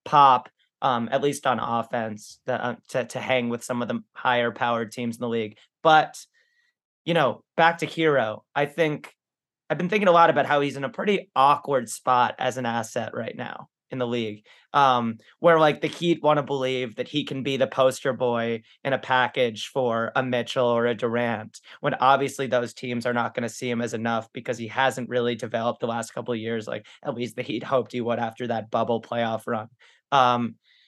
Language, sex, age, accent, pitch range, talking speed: English, male, 30-49, American, 120-155 Hz, 215 wpm